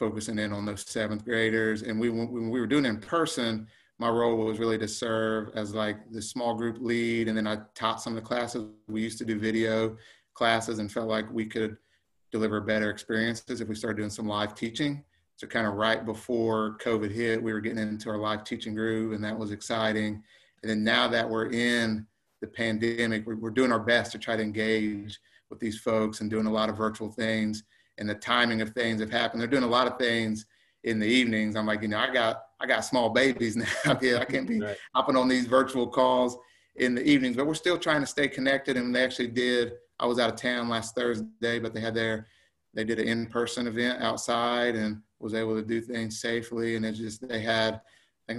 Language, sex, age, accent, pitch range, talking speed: English, male, 30-49, American, 110-120 Hz, 225 wpm